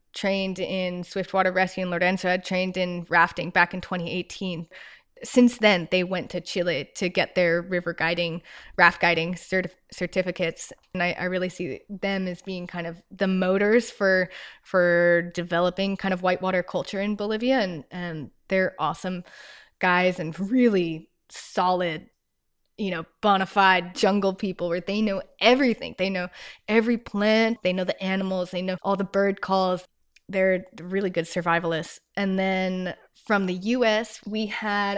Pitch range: 180-195 Hz